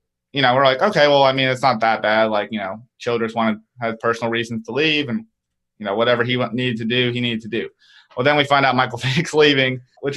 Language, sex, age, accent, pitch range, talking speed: English, male, 20-39, American, 110-130 Hz, 265 wpm